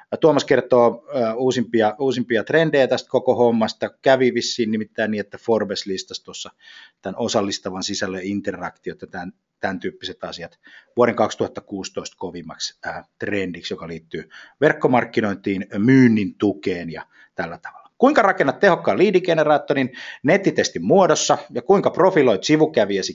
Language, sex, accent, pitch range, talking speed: Finnish, male, native, 95-135 Hz, 120 wpm